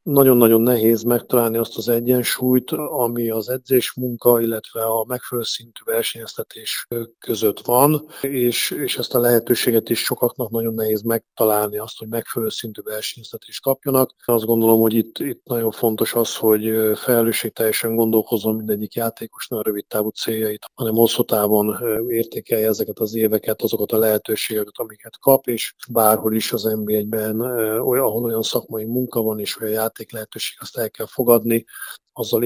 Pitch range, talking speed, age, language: 110-120 Hz, 145 wpm, 40-59, Hungarian